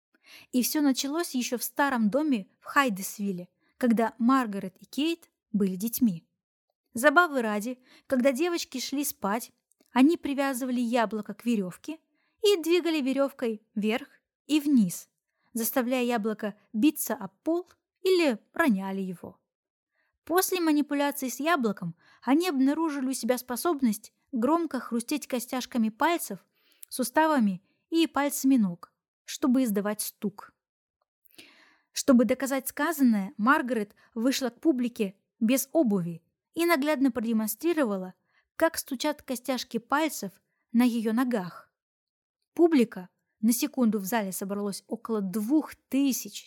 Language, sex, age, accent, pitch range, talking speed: Russian, female, 20-39, native, 220-290 Hz, 115 wpm